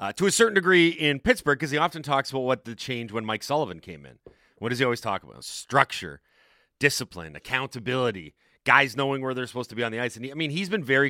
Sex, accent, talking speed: male, American, 250 wpm